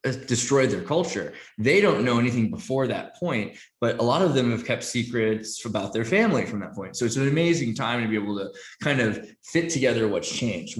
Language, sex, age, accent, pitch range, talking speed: English, male, 20-39, American, 110-135 Hz, 215 wpm